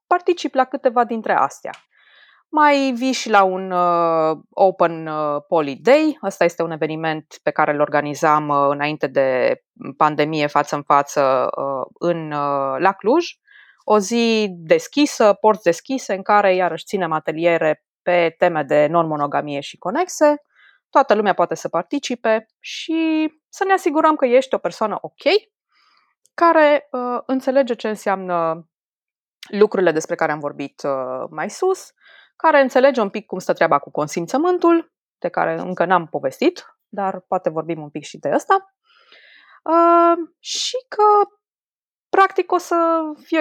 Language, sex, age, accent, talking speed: Romanian, female, 20-39, native, 140 wpm